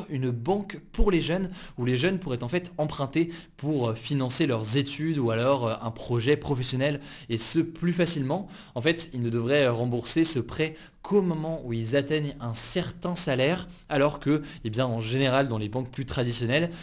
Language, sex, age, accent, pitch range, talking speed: French, male, 20-39, French, 120-155 Hz, 180 wpm